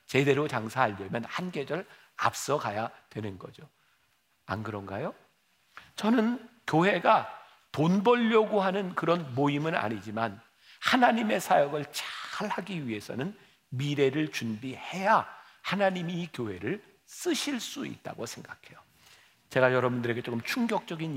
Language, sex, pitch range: Korean, male, 120-195 Hz